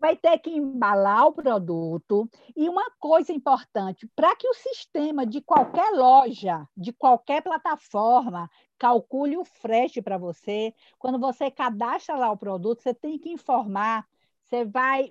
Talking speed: 145 wpm